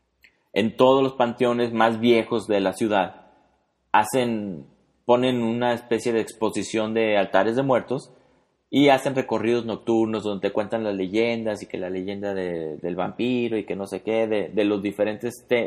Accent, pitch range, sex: Mexican, 100-125 Hz, male